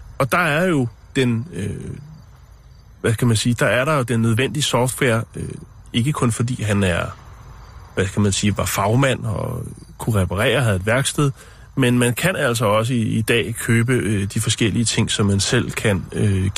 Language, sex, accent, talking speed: Danish, male, native, 190 wpm